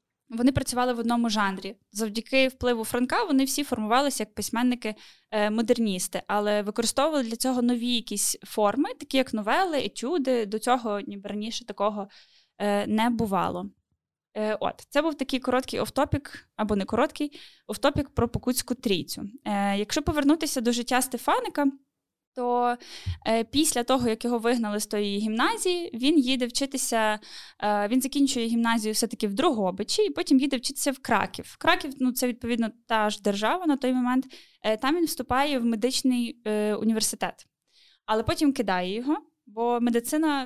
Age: 10-29